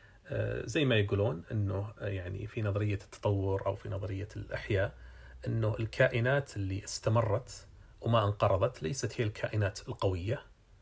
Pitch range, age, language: 100-120 Hz, 40-59, Arabic